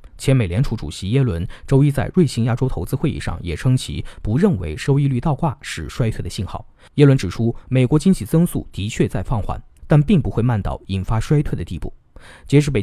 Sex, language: male, Chinese